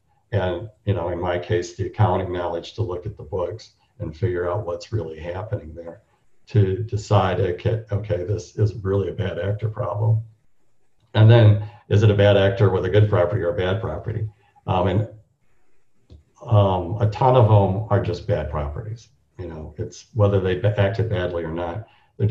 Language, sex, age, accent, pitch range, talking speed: English, male, 50-69, American, 95-110 Hz, 185 wpm